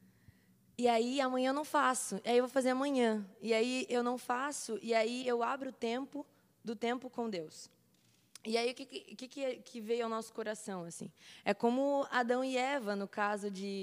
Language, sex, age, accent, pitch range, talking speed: English, female, 20-39, Brazilian, 215-260 Hz, 200 wpm